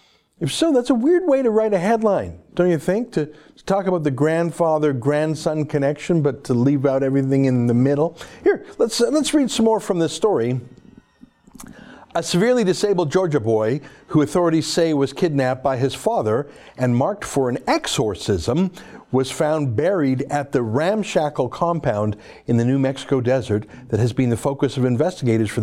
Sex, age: male, 50-69